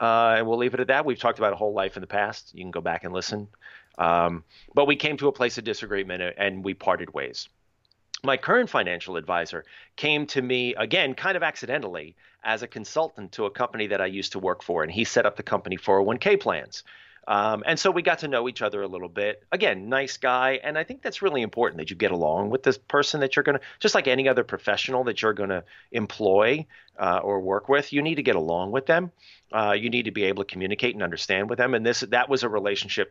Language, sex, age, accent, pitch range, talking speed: English, male, 30-49, American, 90-130 Hz, 245 wpm